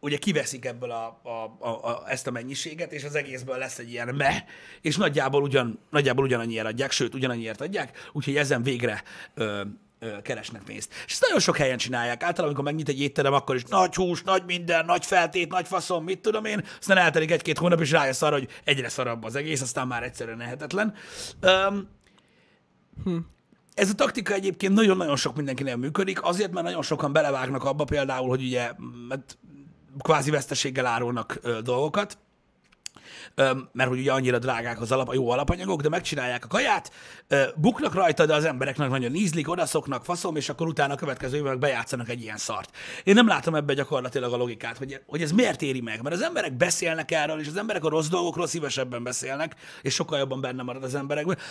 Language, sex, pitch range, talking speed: Hungarian, male, 130-170 Hz, 185 wpm